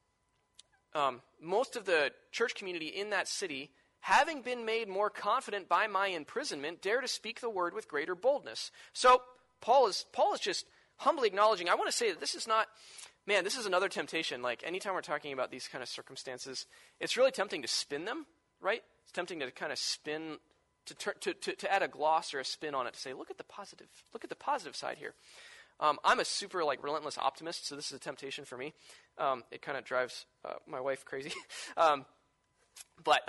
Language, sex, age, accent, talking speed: English, male, 20-39, American, 215 wpm